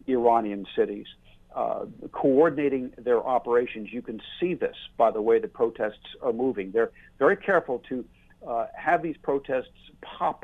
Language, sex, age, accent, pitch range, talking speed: English, male, 60-79, American, 115-160 Hz, 150 wpm